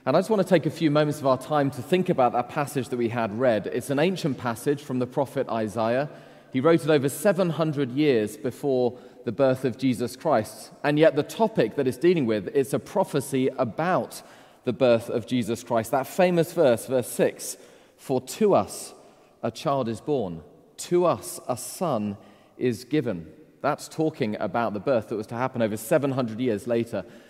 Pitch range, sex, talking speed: 120-150 Hz, male, 195 wpm